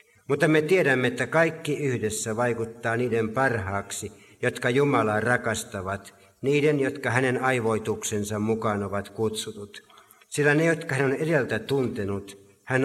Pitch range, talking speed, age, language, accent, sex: 105-130 Hz, 125 wpm, 60-79, Finnish, native, male